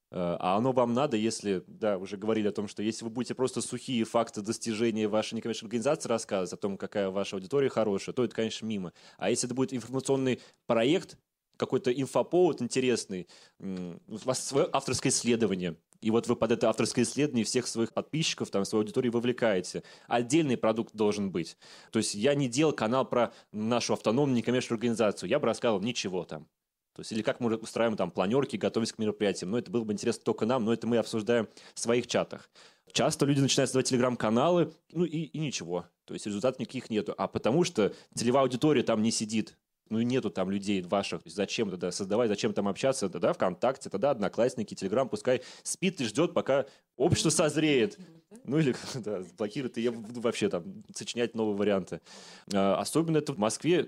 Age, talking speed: 20-39, 190 wpm